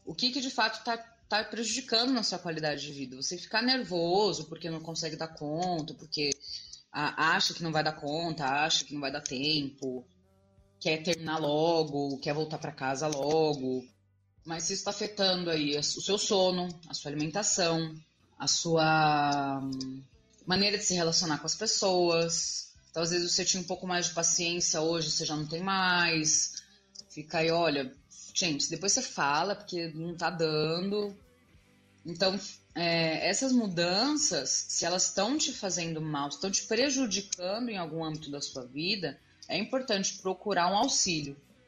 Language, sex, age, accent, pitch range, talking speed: Portuguese, female, 20-39, Brazilian, 150-185 Hz, 165 wpm